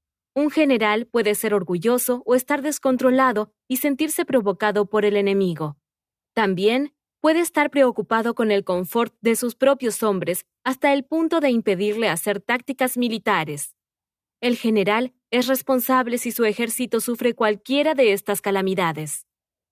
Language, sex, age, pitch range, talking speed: Spanish, female, 20-39, 200-265 Hz, 135 wpm